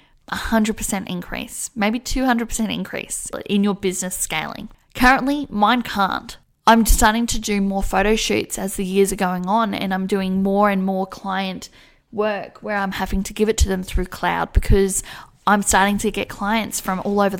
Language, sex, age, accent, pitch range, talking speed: English, female, 10-29, Australian, 195-230 Hz, 180 wpm